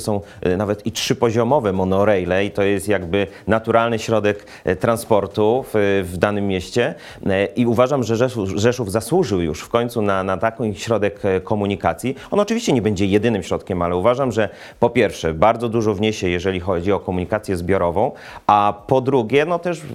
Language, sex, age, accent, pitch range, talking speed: Polish, male, 30-49, native, 95-115 Hz, 165 wpm